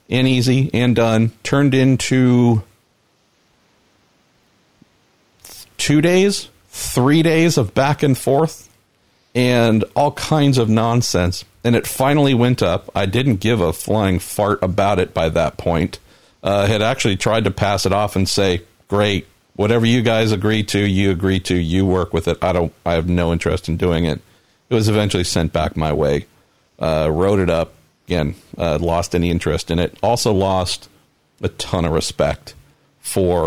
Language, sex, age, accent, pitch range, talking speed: English, male, 40-59, American, 90-115 Hz, 165 wpm